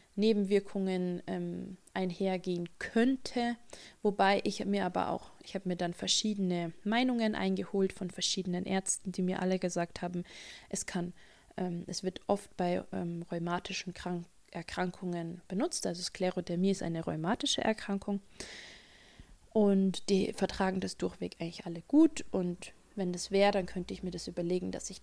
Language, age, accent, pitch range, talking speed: German, 20-39, German, 180-225 Hz, 150 wpm